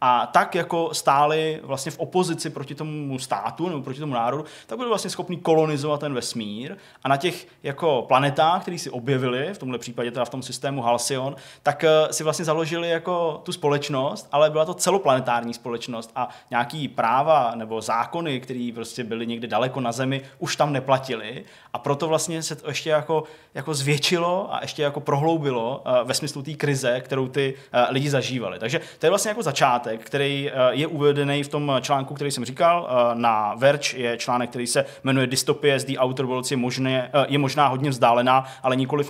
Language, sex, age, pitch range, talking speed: Czech, male, 20-39, 120-150 Hz, 185 wpm